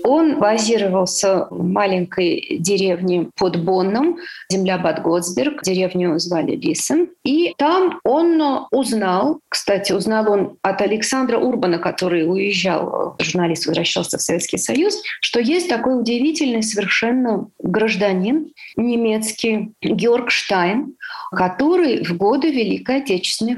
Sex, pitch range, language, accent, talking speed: female, 190-290 Hz, Russian, native, 110 wpm